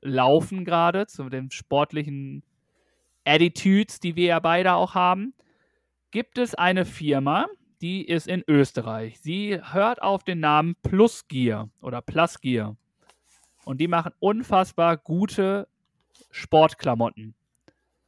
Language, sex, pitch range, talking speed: German, male, 145-180 Hz, 115 wpm